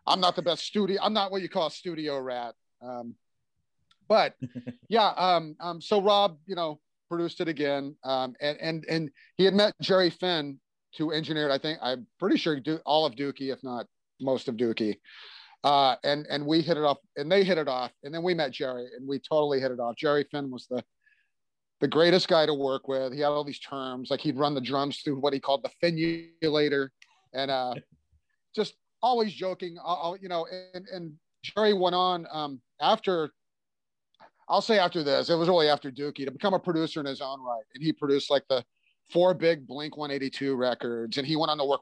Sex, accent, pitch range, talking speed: male, American, 130-165 Hz, 210 wpm